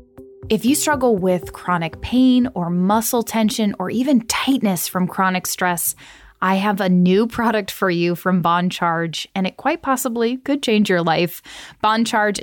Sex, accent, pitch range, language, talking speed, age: female, American, 180-225 Hz, English, 170 wpm, 10-29